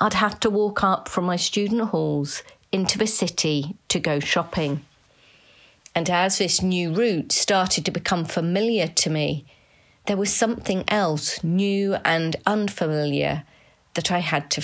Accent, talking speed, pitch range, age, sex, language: British, 150 wpm, 155-200 Hz, 40-59, female, English